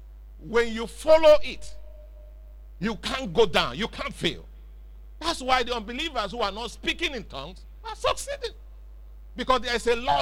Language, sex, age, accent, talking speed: English, male, 50-69, Nigerian, 165 wpm